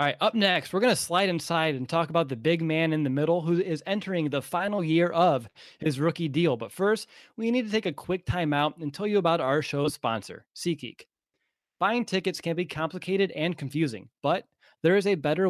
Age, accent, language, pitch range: 20-39, American, English, 140-170 Hz